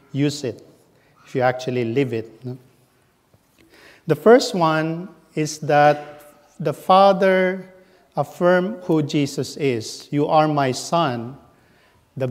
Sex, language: male, English